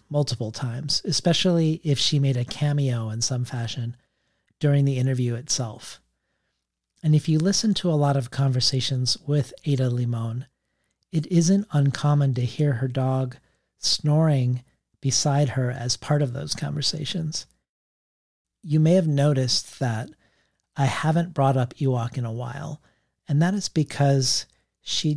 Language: English